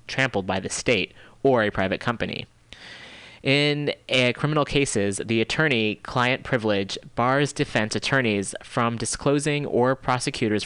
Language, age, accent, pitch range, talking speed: English, 30-49, American, 105-130 Hz, 125 wpm